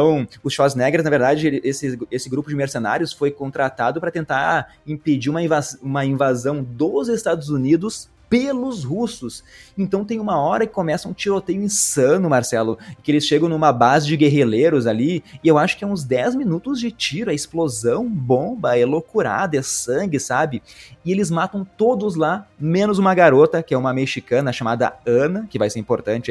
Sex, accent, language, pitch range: male, Brazilian, Portuguese, 135-190 Hz